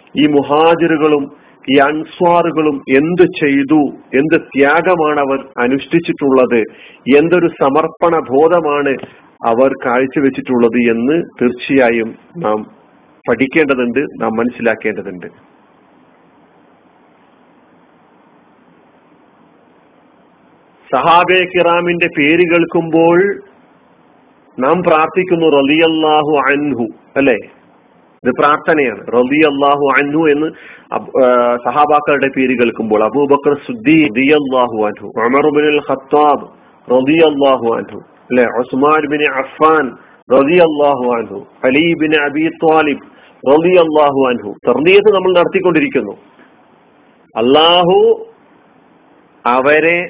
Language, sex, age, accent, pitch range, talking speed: Malayalam, male, 40-59, native, 135-165 Hz, 45 wpm